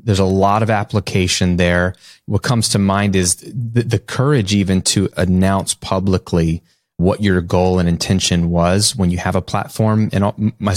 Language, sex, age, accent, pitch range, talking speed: English, male, 30-49, American, 95-125 Hz, 175 wpm